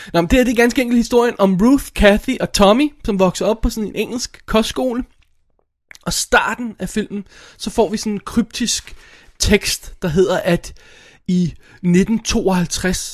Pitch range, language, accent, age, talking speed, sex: 150-195 Hz, Danish, native, 20-39, 185 wpm, male